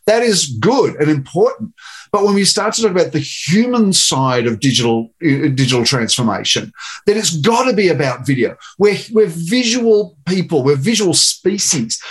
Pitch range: 145-205 Hz